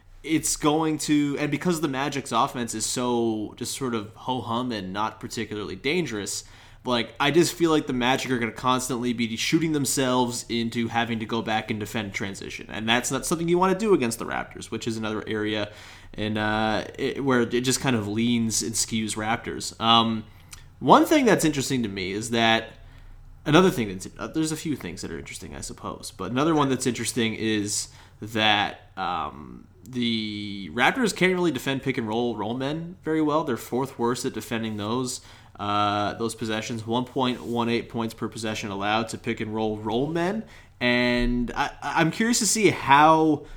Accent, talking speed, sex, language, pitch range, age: American, 190 wpm, male, English, 110-135 Hz, 20-39